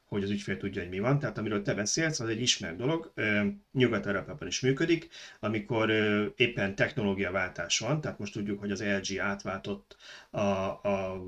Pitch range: 100-130 Hz